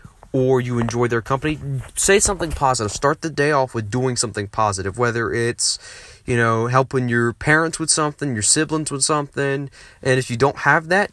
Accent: American